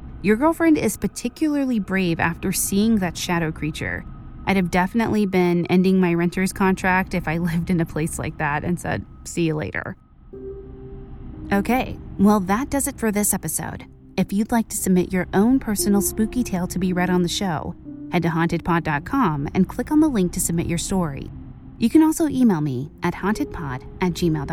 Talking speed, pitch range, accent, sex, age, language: 180 wpm, 170-215 Hz, American, female, 20-39, English